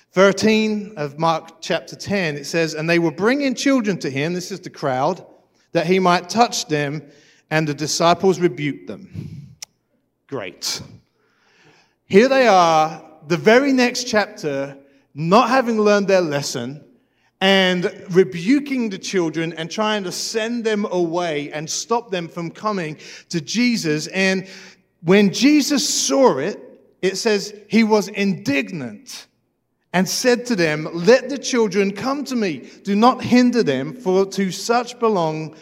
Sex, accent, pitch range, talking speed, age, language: male, British, 160-210 Hz, 145 wpm, 40-59, English